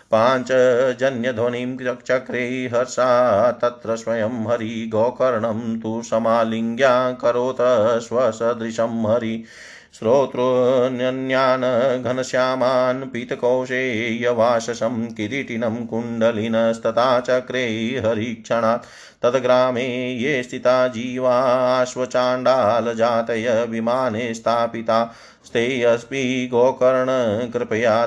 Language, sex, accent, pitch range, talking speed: Hindi, male, native, 115-125 Hz, 60 wpm